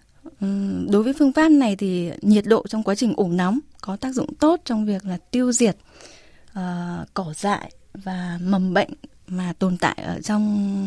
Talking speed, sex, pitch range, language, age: 180 wpm, female, 185-235 Hz, Vietnamese, 10-29